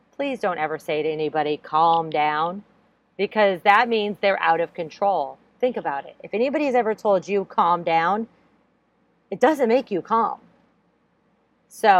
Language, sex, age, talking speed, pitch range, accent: English, female, 40-59, 155 wpm, 170-225 Hz, American